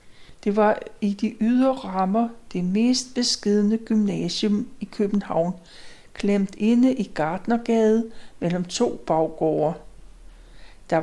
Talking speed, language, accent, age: 110 wpm, Danish, native, 60-79